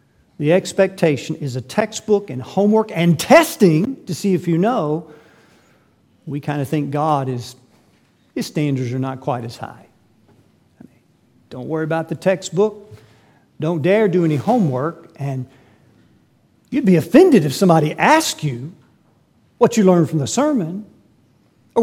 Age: 50-69